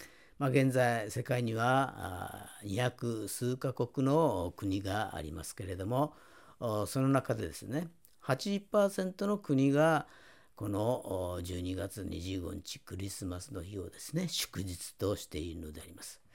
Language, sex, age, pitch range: Japanese, female, 50-69, 95-135 Hz